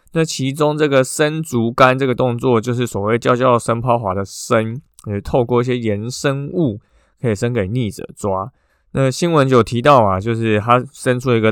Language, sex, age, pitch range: Chinese, male, 20-39, 105-135 Hz